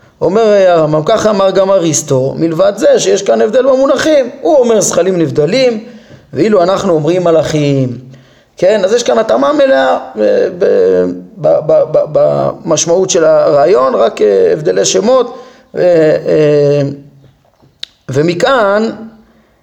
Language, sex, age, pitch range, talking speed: Hebrew, male, 30-49, 150-200 Hz, 105 wpm